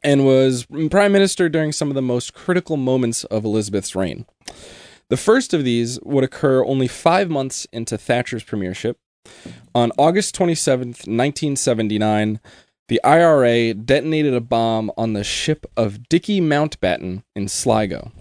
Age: 20-39